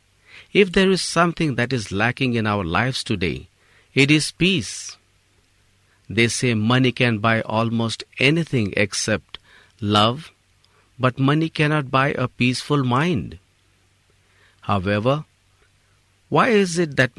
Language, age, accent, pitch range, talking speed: English, 50-69, Indian, 100-140 Hz, 120 wpm